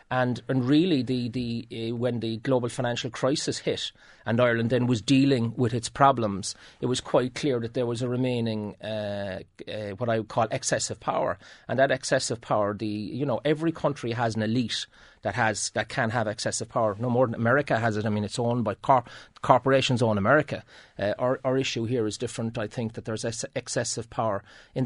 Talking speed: 205 wpm